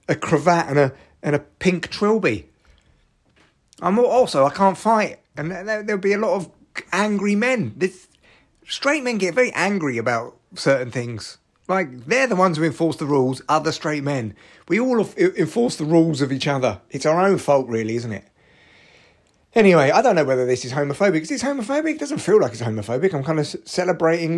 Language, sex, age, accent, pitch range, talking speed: English, male, 30-49, British, 145-200 Hz, 185 wpm